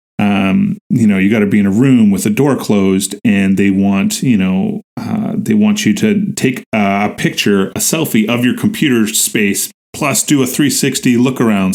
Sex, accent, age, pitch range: male, American, 30-49, 105-135 Hz